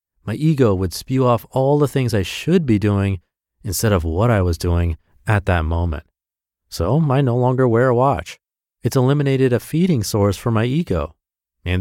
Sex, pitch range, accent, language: male, 85-120 Hz, American, English